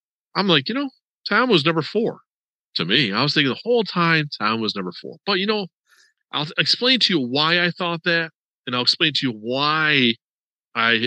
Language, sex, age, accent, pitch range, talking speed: English, male, 40-59, American, 105-150 Hz, 205 wpm